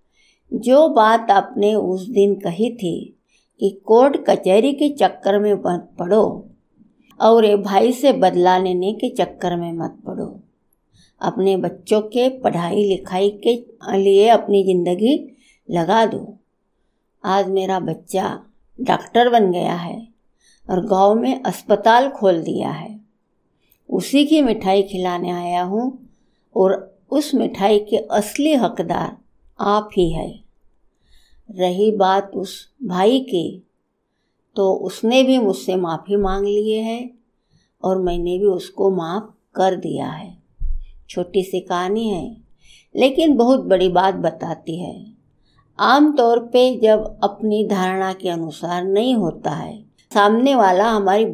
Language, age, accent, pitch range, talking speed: Hindi, 60-79, native, 185-225 Hz, 130 wpm